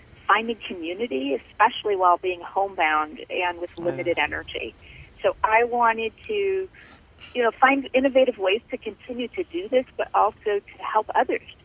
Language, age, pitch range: English, 40-59, 175-255 Hz